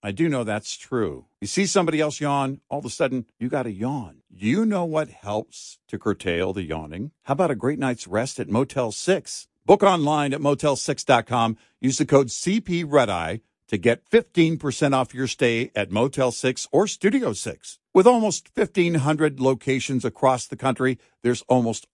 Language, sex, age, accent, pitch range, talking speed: English, male, 50-69, American, 115-150 Hz, 180 wpm